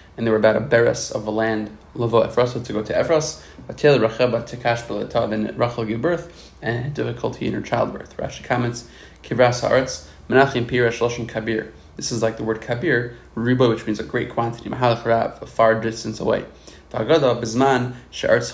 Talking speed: 190 wpm